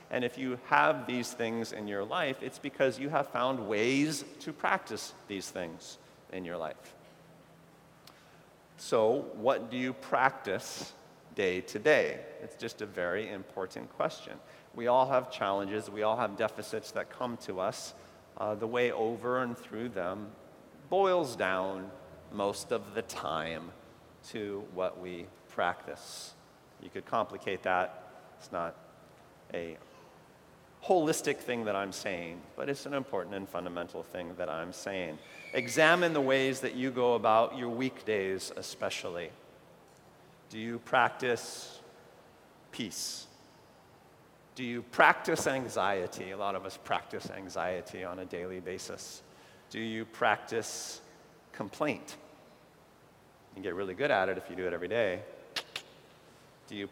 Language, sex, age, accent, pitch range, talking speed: English, male, 40-59, American, 95-130 Hz, 140 wpm